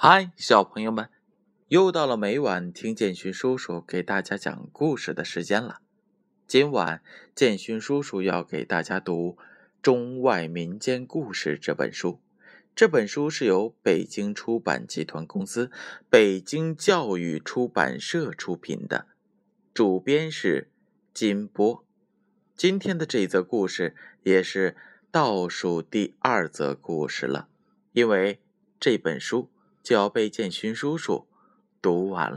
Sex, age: male, 20-39